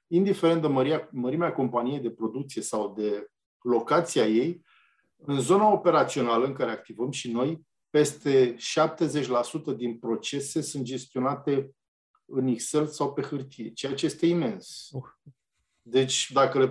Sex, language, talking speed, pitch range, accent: male, Romanian, 135 wpm, 125-160 Hz, native